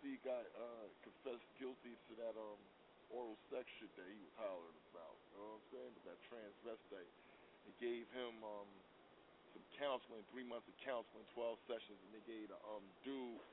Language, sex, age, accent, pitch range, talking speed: English, male, 40-59, American, 115-140 Hz, 185 wpm